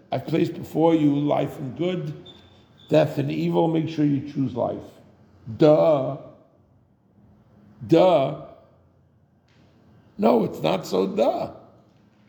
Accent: American